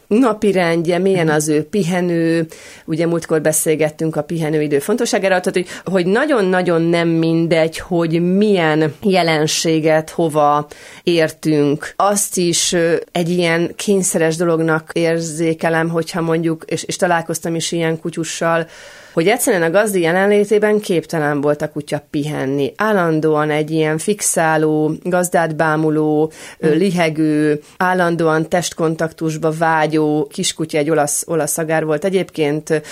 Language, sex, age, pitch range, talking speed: Hungarian, female, 30-49, 155-180 Hz, 115 wpm